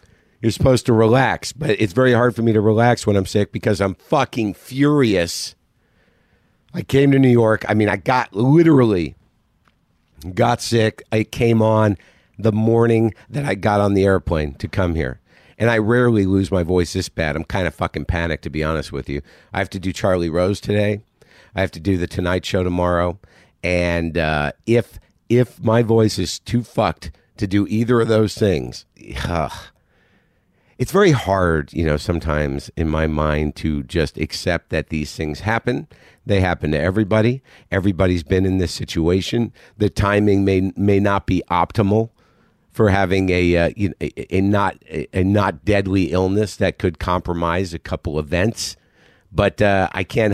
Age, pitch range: 50-69, 90-115 Hz